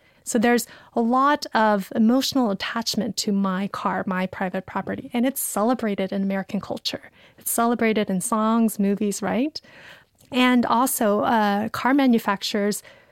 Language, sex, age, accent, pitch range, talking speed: English, female, 30-49, American, 205-245 Hz, 135 wpm